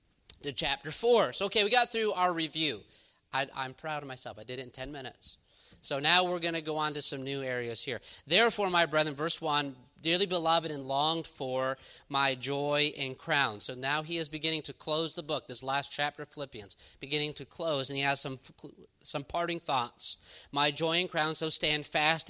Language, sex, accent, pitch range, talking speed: English, male, American, 135-165 Hz, 205 wpm